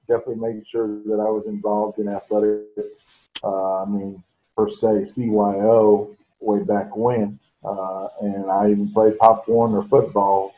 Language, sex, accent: English, male, American